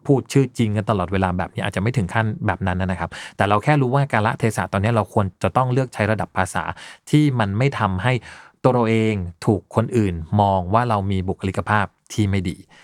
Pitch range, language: 95-130 Hz, Thai